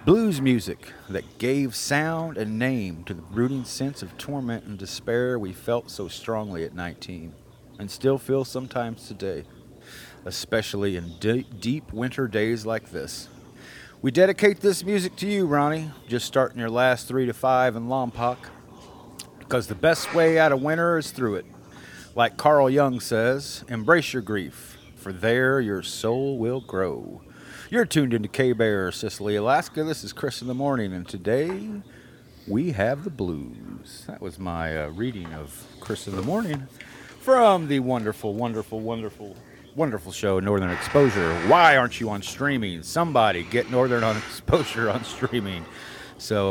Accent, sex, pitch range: American, male, 100-135 Hz